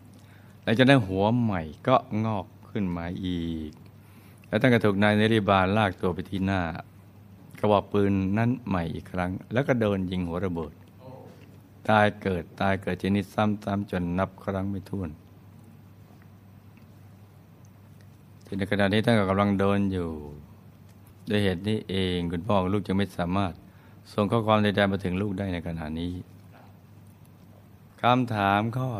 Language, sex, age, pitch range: Thai, male, 60-79, 95-110 Hz